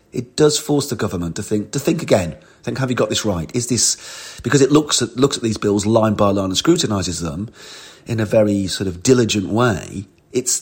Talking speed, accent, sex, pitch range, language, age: 225 wpm, British, male, 95-125 Hz, English, 40-59